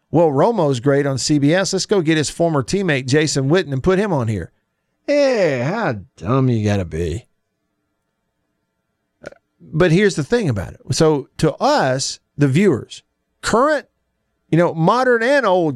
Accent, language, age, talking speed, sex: American, English, 50-69, 160 wpm, male